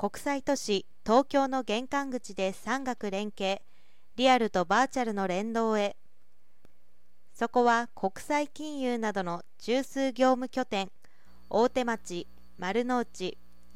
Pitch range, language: 195-255 Hz, Japanese